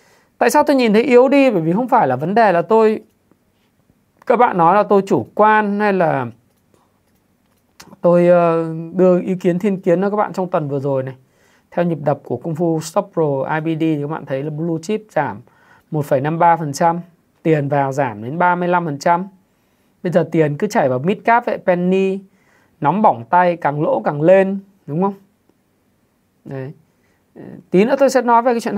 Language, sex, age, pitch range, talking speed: Vietnamese, male, 20-39, 155-200 Hz, 190 wpm